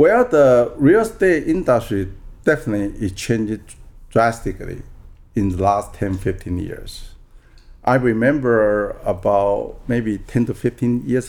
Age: 50-69